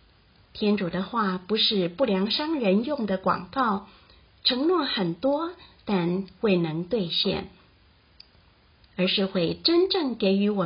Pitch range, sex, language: 175-250 Hz, female, Chinese